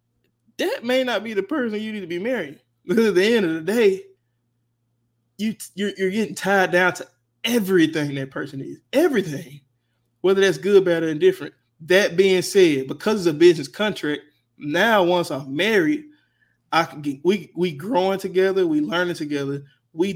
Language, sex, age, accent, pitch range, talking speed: English, male, 20-39, American, 150-200 Hz, 175 wpm